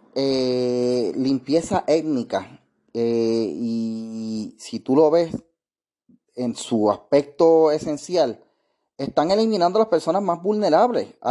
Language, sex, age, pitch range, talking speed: Spanish, male, 30-49, 135-195 Hz, 115 wpm